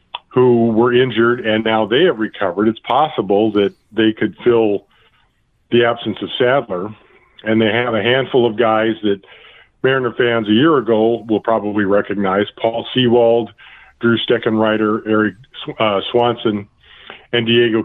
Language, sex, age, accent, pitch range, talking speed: English, male, 50-69, American, 105-120 Hz, 140 wpm